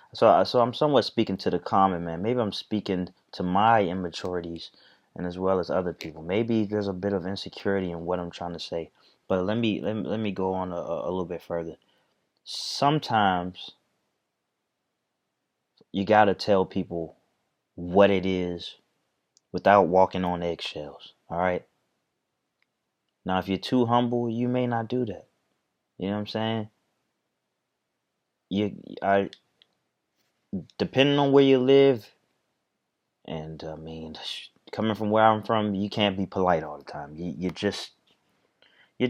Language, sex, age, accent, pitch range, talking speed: English, male, 20-39, American, 90-115 Hz, 160 wpm